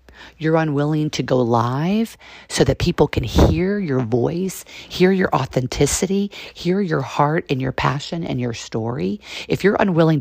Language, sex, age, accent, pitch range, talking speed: English, female, 40-59, American, 140-220 Hz, 160 wpm